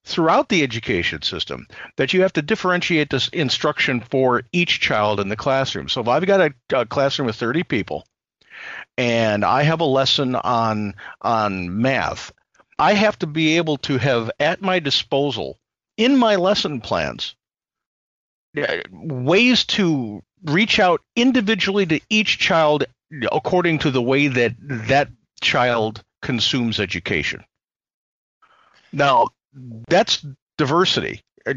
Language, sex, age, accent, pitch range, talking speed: English, male, 50-69, American, 125-175 Hz, 135 wpm